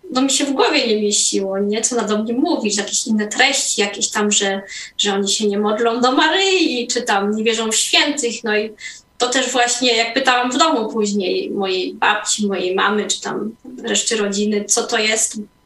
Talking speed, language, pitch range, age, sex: 205 wpm, Polish, 220-265 Hz, 20-39, female